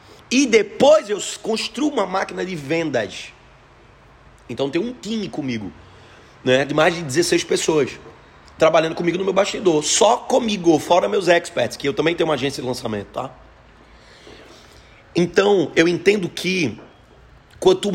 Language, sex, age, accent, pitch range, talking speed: Portuguese, male, 30-49, Brazilian, 150-230 Hz, 145 wpm